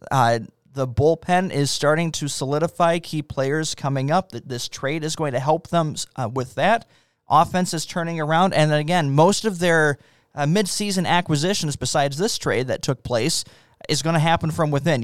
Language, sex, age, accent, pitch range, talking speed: English, male, 20-39, American, 130-155 Hz, 190 wpm